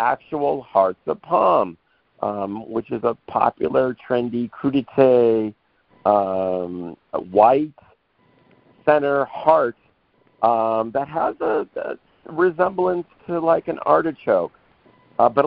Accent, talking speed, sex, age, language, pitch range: American, 105 wpm, male, 50-69, English, 110-140 Hz